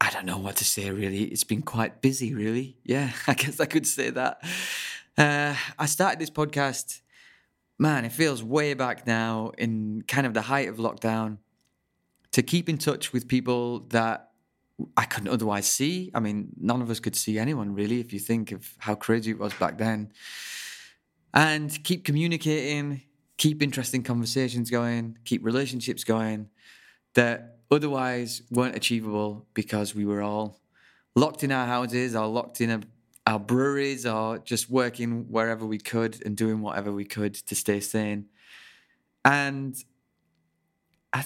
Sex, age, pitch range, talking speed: male, 20-39, 110-140 Hz, 160 wpm